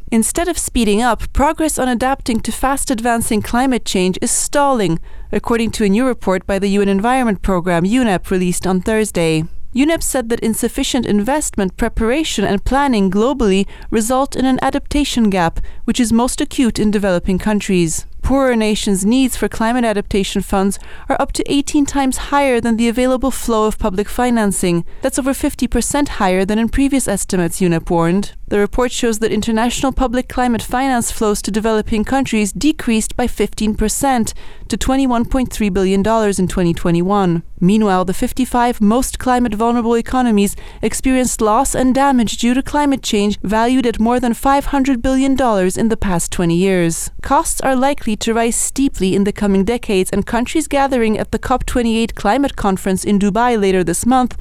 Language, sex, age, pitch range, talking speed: English, female, 30-49, 200-255 Hz, 160 wpm